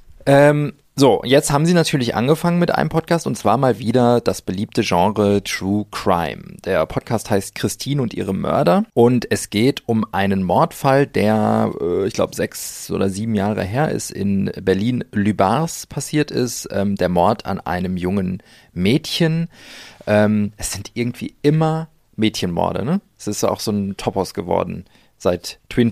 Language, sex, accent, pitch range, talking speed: German, male, German, 100-125 Hz, 160 wpm